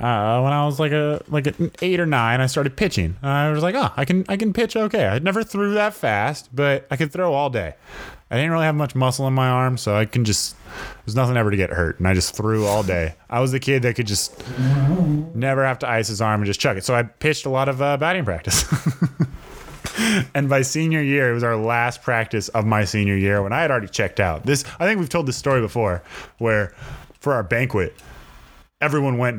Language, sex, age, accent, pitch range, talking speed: English, male, 20-39, American, 100-140 Hz, 245 wpm